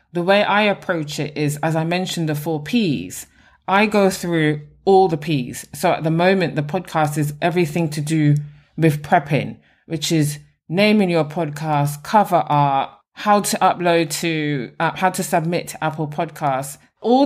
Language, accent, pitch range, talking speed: English, British, 150-200 Hz, 170 wpm